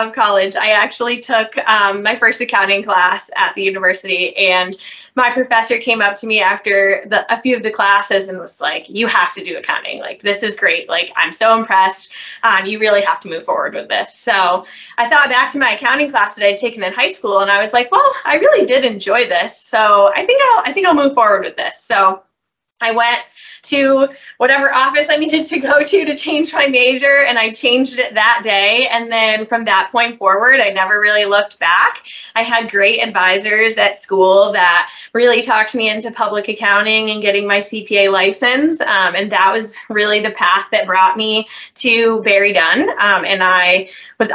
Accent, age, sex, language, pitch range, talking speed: American, 10-29, female, English, 190-240 Hz, 205 wpm